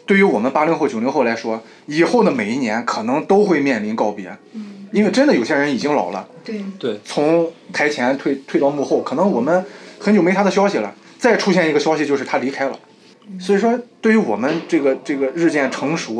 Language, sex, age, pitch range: Chinese, male, 20-39, 125-200 Hz